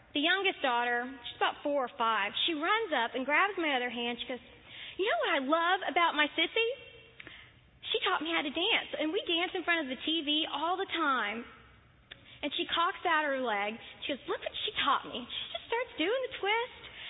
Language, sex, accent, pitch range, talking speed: English, female, American, 240-325 Hz, 220 wpm